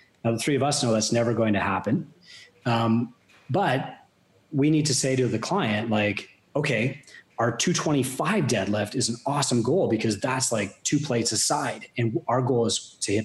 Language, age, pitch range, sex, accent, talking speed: English, 30-49, 110-130 Hz, male, American, 195 wpm